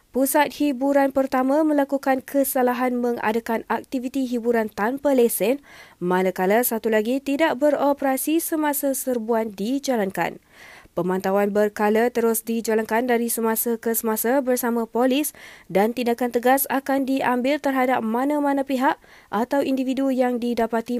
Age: 20-39